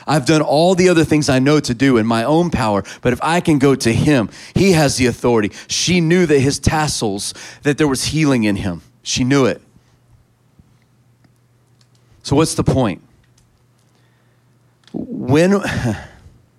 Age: 40-59